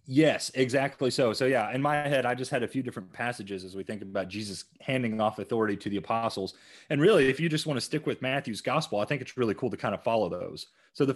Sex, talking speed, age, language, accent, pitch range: male, 265 wpm, 30-49, English, American, 100-140 Hz